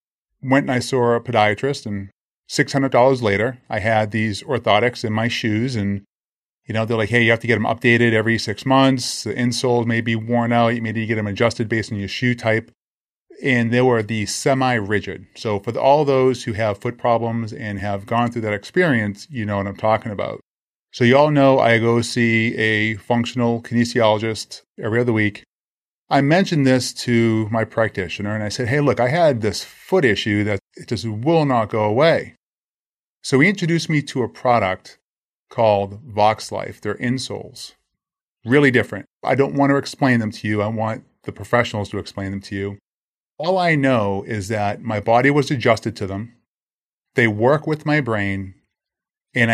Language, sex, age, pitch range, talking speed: English, male, 30-49, 105-130 Hz, 195 wpm